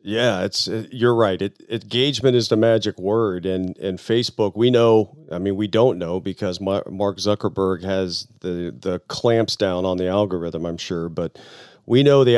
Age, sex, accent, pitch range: 40-59, male, American, 100-125 Hz